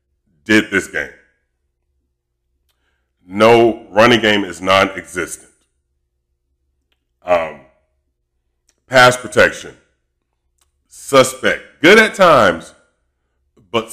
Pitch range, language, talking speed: 65-110 Hz, English, 70 wpm